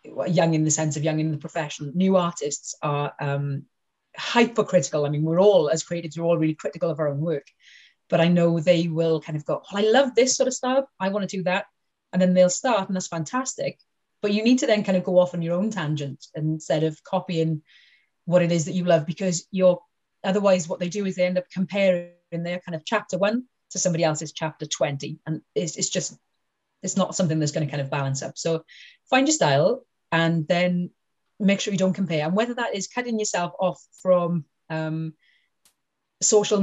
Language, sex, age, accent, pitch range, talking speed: English, female, 30-49, British, 160-200 Hz, 220 wpm